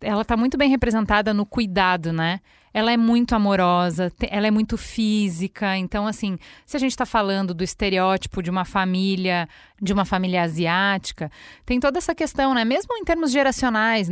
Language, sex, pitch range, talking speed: Portuguese, female, 195-240 Hz, 175 wpm